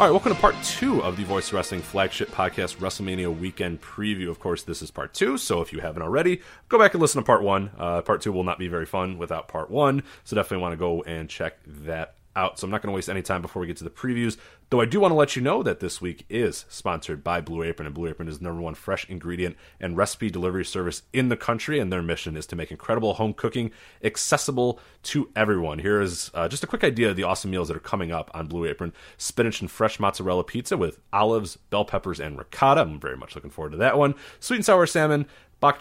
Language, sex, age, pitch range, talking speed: English, male, 30-49, 85-120 Hz, 255 wpm